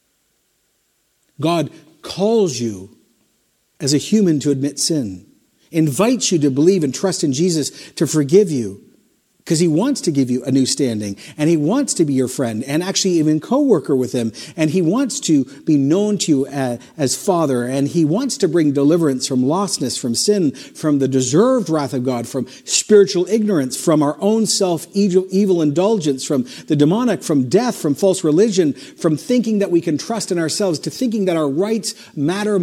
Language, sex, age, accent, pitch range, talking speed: English, male, 50-69, American, 140-195 Hz, 185 wpm